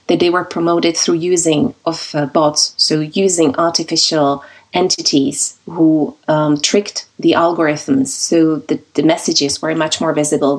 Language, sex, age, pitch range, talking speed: English, female, 30-49, 160-190 Hz, 145 wpm